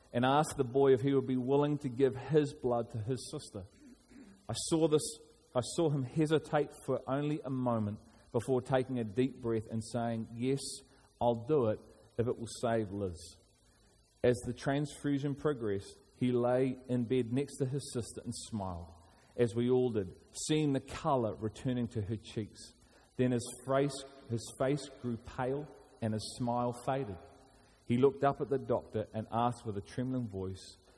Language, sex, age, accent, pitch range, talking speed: English, male, 30-49, Australian, 105-130 Hz, 175 wpm